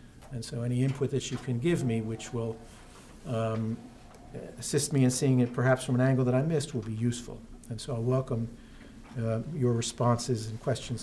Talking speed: 195 wpm